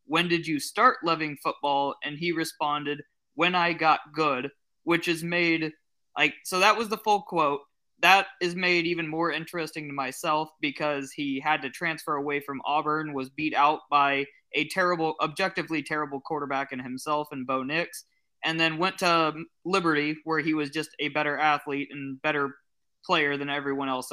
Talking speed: 175 wpm